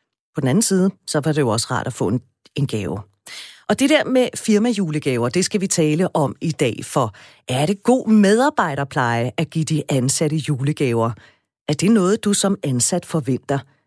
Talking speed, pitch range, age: 185 wpm, 135-195 Hz, 40-59